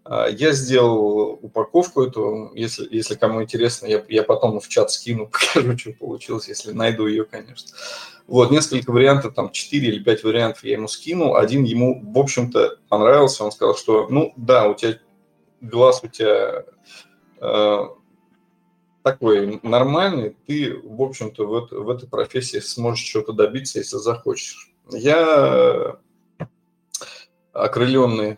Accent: native